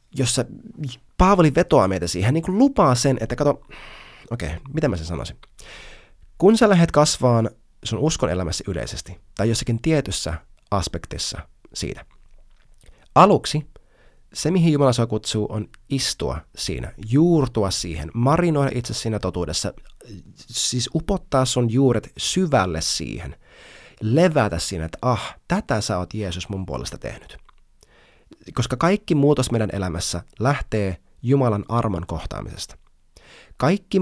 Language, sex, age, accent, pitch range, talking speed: Finnish, male, 30-49, native, 90-145 Hz, 125 wpm